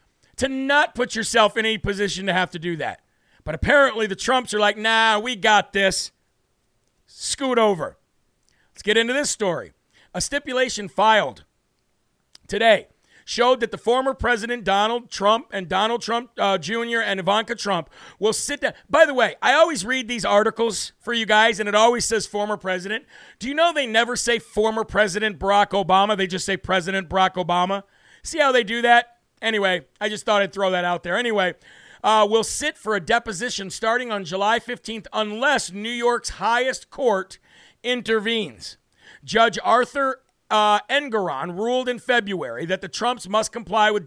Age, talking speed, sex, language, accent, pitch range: 50-69, 175 wpm, male, English, American, 205-235 Hz